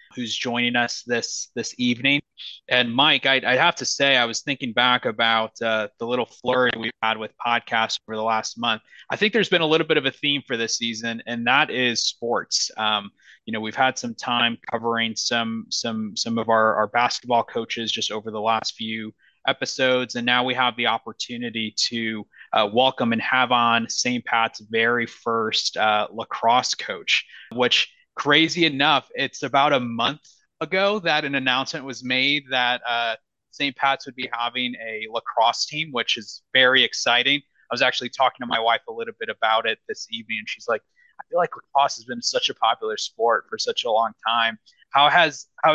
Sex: male